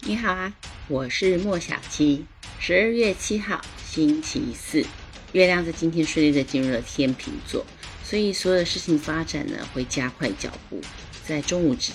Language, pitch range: Chinese, 135-185 Hz